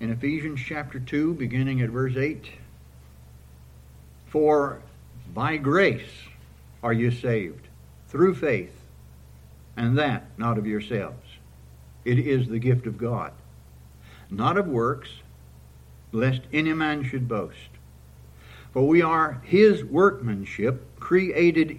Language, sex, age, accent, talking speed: English, male, 60-79, American, 115 wpm